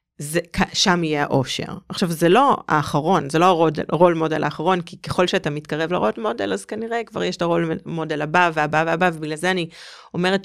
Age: 30-49